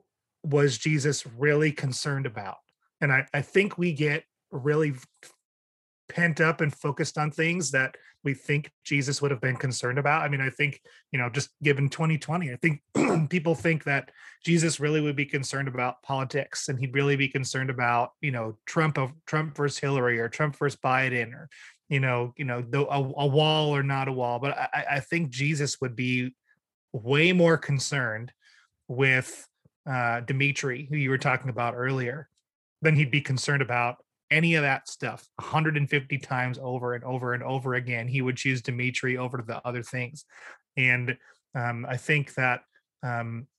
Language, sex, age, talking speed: English, male, 30-49, 175 wpm